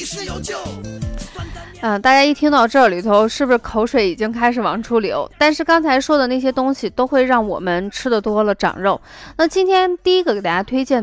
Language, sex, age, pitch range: Chinese, female, 20-39, 215-275 Hz